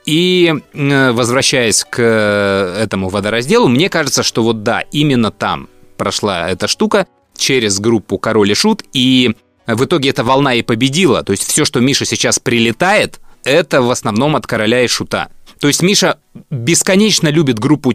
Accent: native